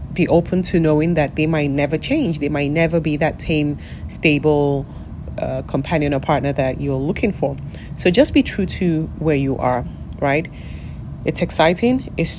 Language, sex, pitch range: English, female, 145-175 Hz